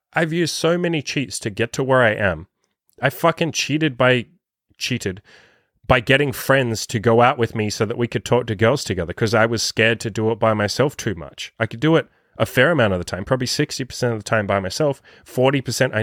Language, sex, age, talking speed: English, male, 30-49, 230 wpm